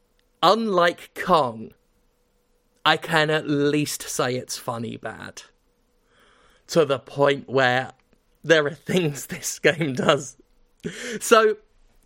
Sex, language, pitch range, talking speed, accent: male, English, 145-195 Hz, 105 wpm, British